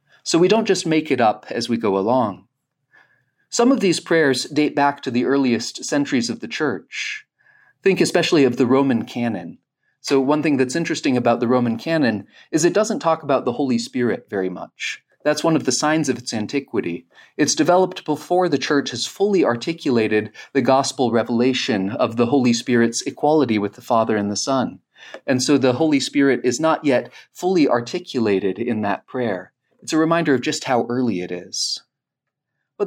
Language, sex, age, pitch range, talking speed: English, male, 30-49, 120-160 Hz, 185 wpm